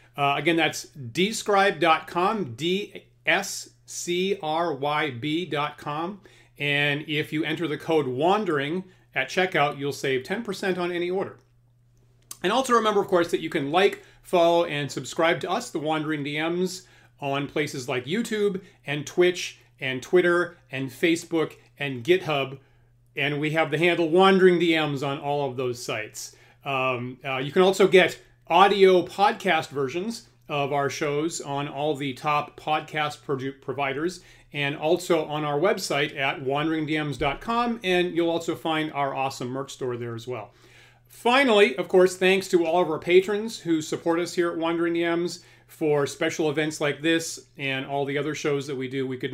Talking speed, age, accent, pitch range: 155 wpm, 40-59, American, 135-175 Hz